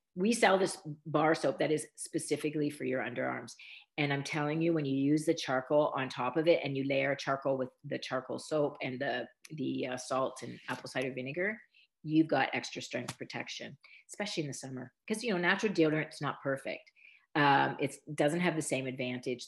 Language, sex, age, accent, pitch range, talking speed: English, female, 40-59, American, 135-170 Hz, 195 wpm